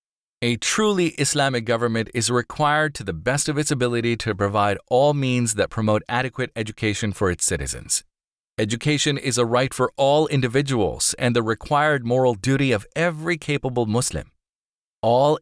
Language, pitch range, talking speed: English, 115-145 Hz, 155 wpm